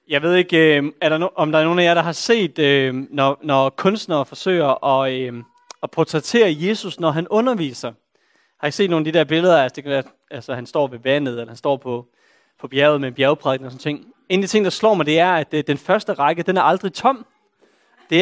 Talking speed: 235 wpm